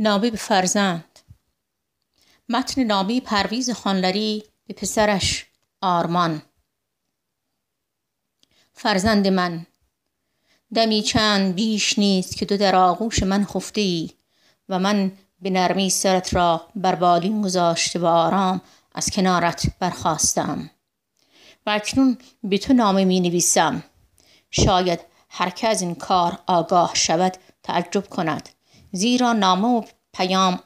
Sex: female